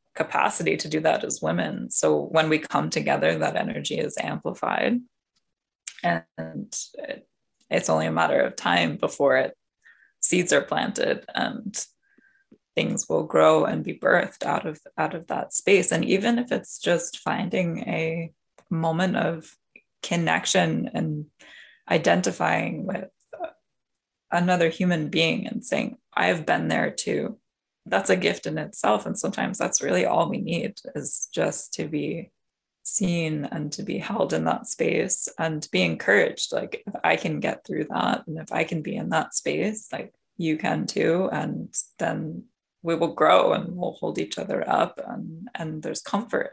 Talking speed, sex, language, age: 160 wpm, female, English, 20-39